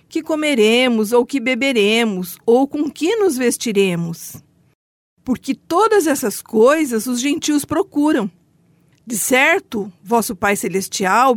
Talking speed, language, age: 115 wpm, Portuguese, 50-69